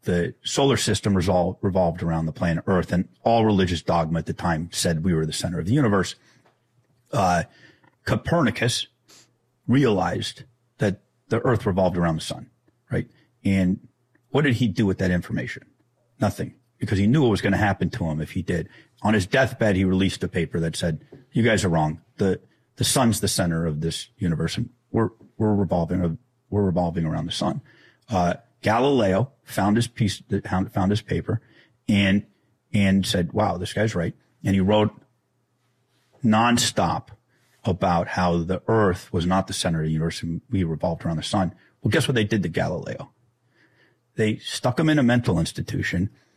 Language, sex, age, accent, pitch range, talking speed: English, male, 40-59, American, 90-120 Hz, 175 wpm